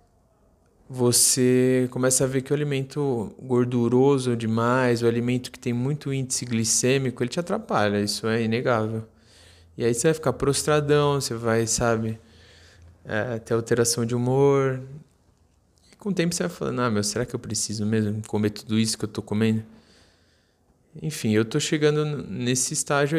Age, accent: 20-39, Brazilian